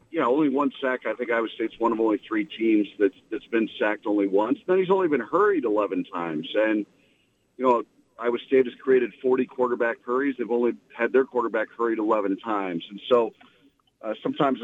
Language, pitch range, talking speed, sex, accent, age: English, 115-145 Hz, 205 wpm, male, American, 50-69